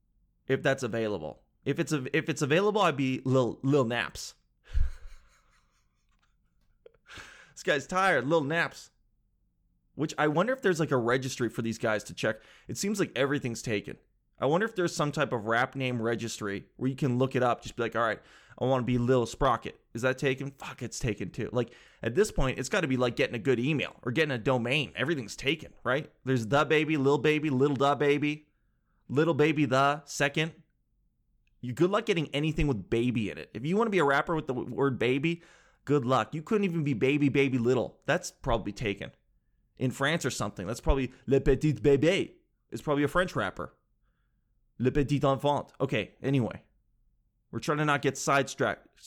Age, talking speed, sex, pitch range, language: 20-39, 195 wpm, male, 120-150 Hz, English